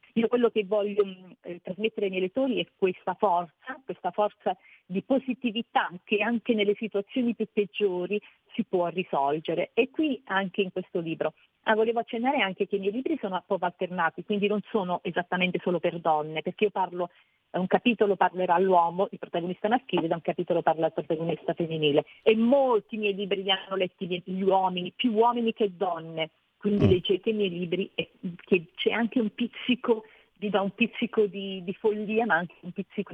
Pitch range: 175-215 Hz